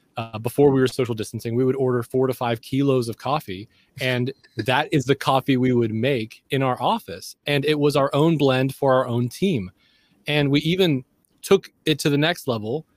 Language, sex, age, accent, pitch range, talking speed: English, male, 20-39, American, 120-145 Hz, 210 wpm